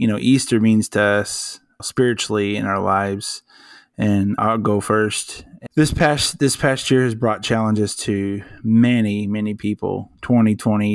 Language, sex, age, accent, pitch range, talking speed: English, male, 20-39, American, 100-110 Hz, 150 wpm